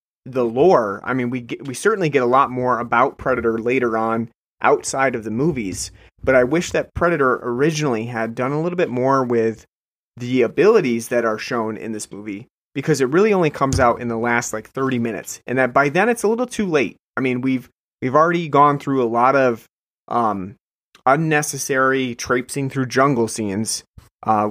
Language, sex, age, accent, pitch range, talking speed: English, male, 30-49, American, 115-145 Hz, 195 wpm